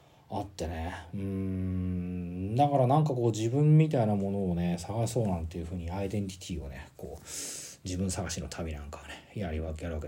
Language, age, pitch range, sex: Japanese, 40-59, 90-140 Hz, male